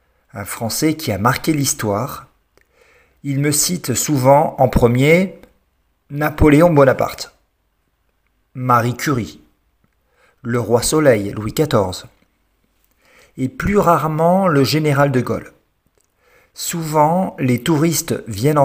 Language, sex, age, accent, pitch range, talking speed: French, male, 50-69, French, 120-160 Hz, 105 wpm